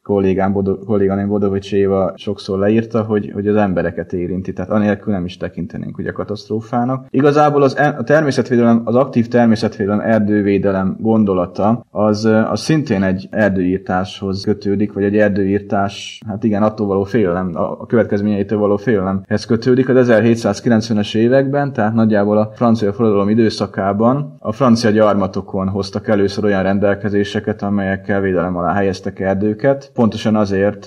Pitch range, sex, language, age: 100-110 Hz, male, Hungarian, 20-39